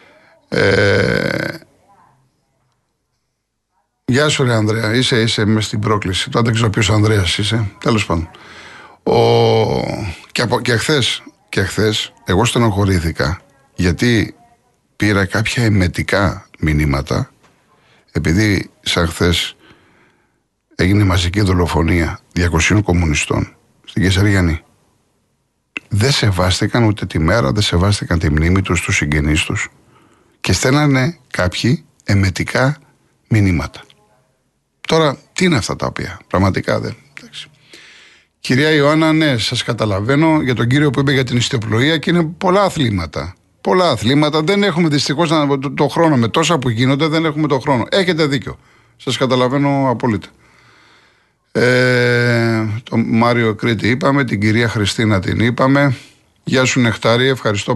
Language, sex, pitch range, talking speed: Greek, male, 100-135 Hz, 125 wpm